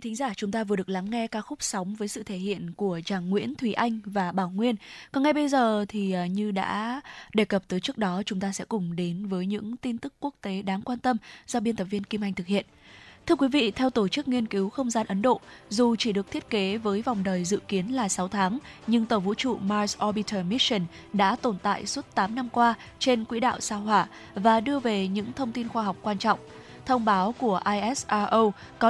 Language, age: Vietnamese, 20-39